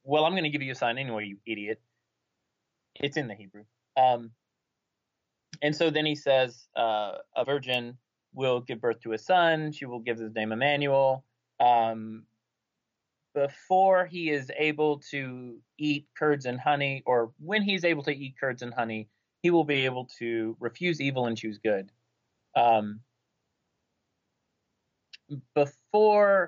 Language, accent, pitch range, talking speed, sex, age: English, American, 115-150 Hz, 150 wpm, male, 30-49